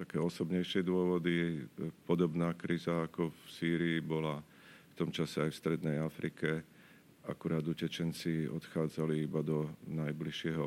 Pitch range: 75-80 Hz